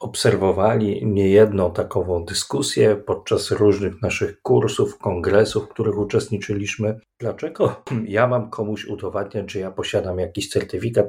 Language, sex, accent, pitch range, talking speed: Polish, male, native, 100-115 Hz, 120 wpm